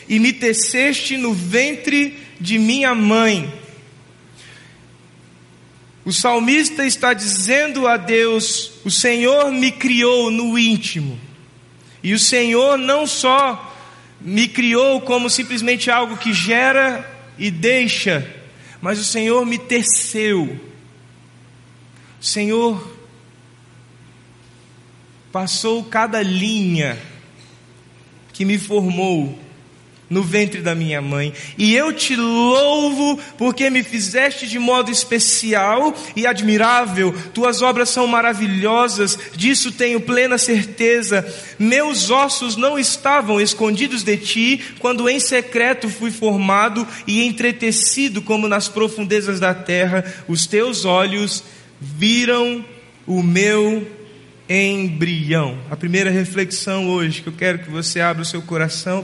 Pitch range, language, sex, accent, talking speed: 180-245 Hz, Portuguese, male, Brazilian, 115 wpm